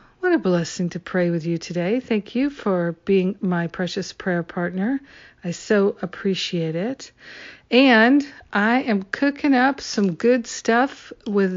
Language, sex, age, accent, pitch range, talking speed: English, female, 50-69, American, 175-215 Hz, 145 wpm